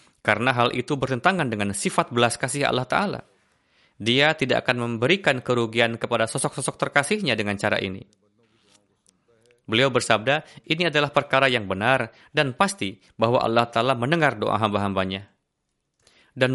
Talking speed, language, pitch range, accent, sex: 135 wpm, Indonesian, 110-140 Hz, native, male